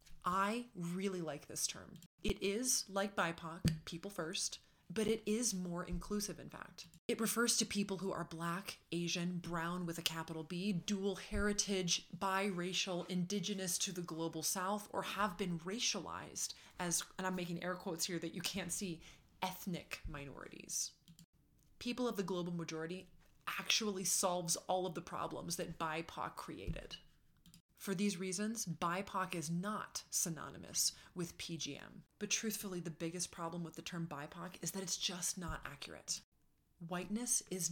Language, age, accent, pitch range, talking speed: English, 20-39, American, 165-200 Hz, 155 wpm